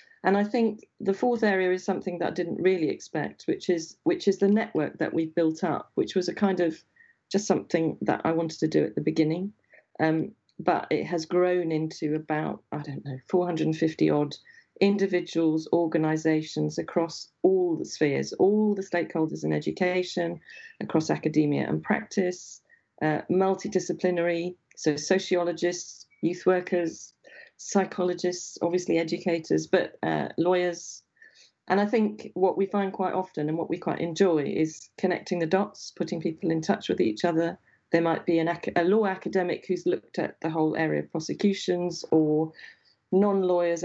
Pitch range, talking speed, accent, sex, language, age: 160-190 Hz, 160 wpm, British, female, English, 40-59